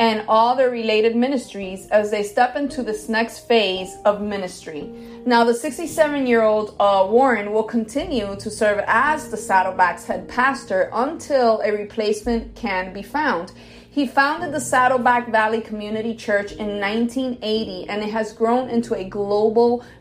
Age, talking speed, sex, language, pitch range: 30-49, 155 wpm, female, English, 205-245 Hz